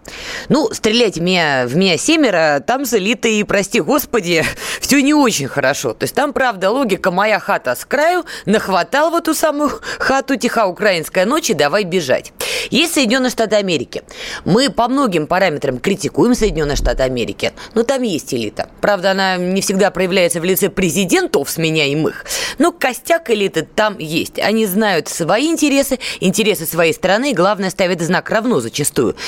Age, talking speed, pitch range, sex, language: 20-39, 160 wpm, 170-260 Hz, female, Russian